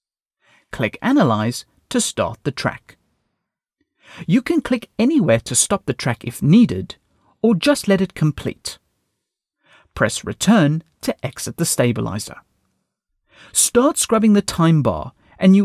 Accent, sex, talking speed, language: British, male, 125 wpm, English